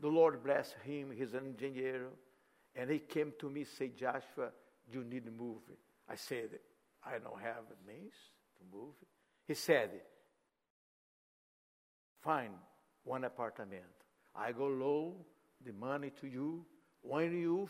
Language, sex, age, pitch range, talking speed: English, male, 60-79, 150-250 Hz, 145 wpm